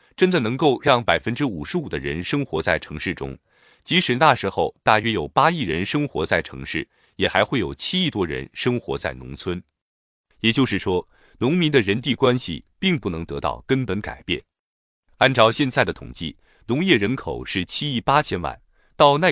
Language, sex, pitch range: Chinese, male, 90-140 Hz